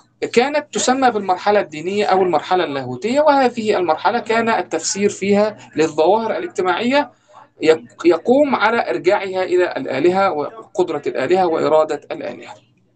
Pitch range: 170-230 Hz